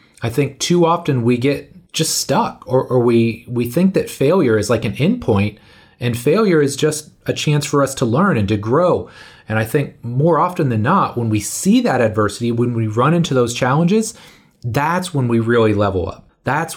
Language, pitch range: English, 110-145 Hz